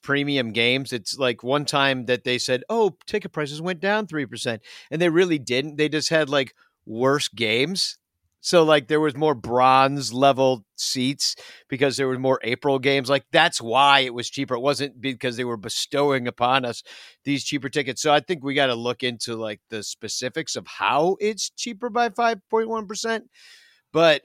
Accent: American